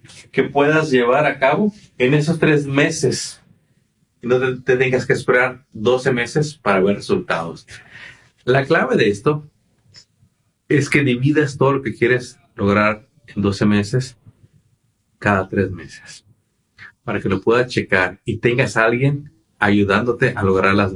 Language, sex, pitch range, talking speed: Spanish, male, 105-150 Hz, 145 wpm